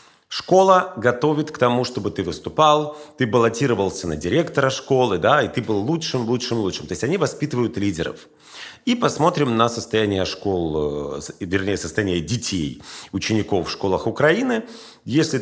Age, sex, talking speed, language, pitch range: 40-59, male, 140 wpm, Russian, 115-150 Hz